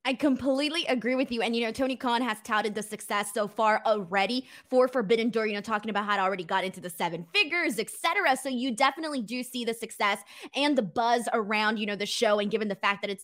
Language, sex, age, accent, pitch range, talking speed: English, female, 20-39, American, 220-280 Hz, 250 wpm